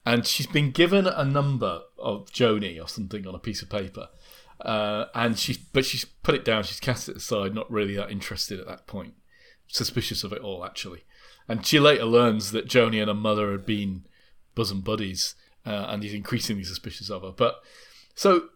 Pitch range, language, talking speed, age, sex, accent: 110-150 Hz, English, 195 wpm, 40-59, male, British